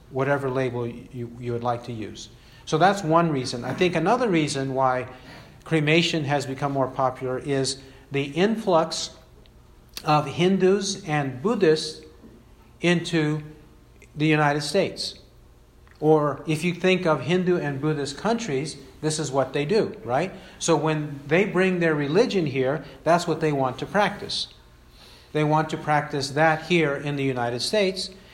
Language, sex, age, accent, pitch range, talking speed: English, male, 50-69, American, 135-170 Hz, 150 wpm